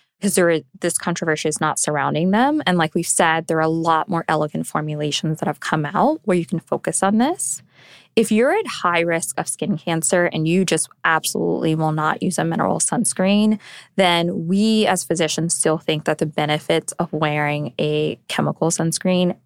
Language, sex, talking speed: English, female, 185 wpm